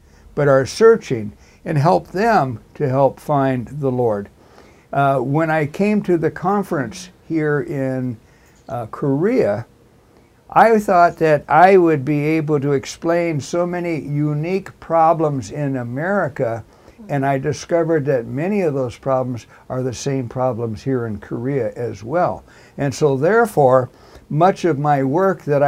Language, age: Korean, 60-79